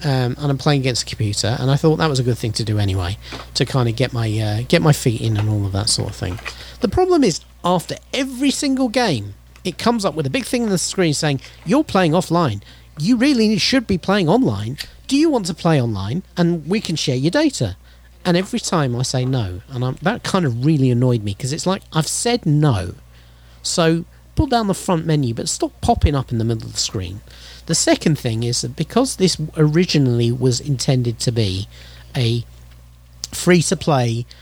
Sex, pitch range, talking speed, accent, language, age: male, 110-170 Hz, 210 wpm, British, English, 40-59